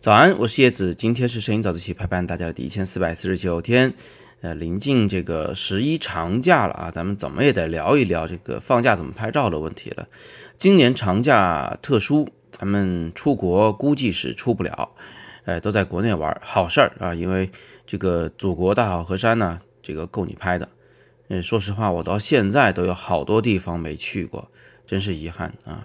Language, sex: Chinese, male